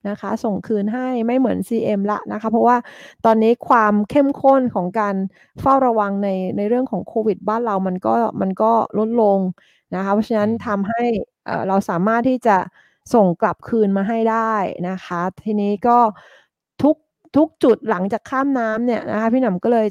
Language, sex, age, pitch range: English, female, 20-39, 195-235 Hz